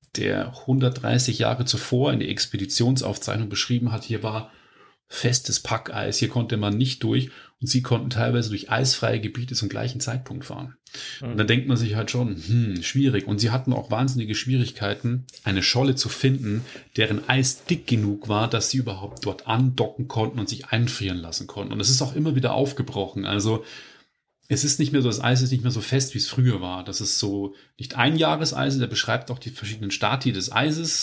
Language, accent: German, German